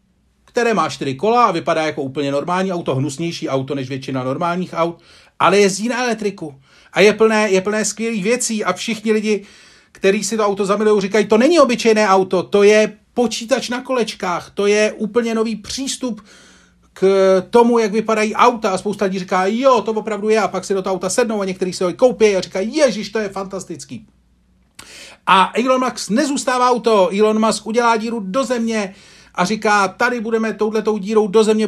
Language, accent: Czech, native